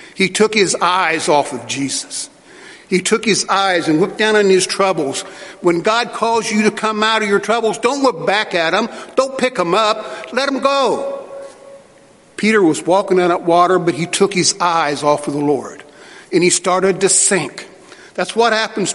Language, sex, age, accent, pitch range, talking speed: English, male, 50-69, American, 175-215 Hz, 195 wpm